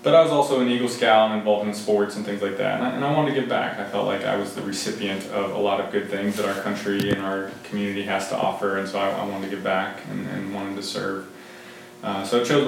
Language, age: English, 20-39